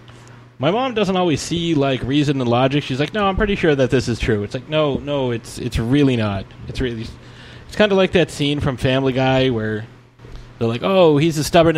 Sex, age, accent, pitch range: male, 20-39, American, 115-140 Hz